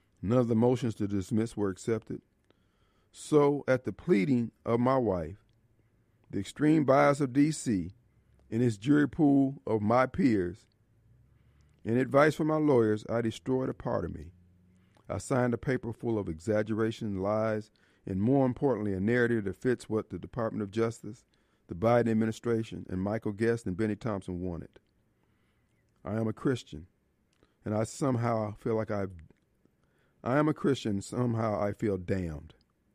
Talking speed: 155 wpm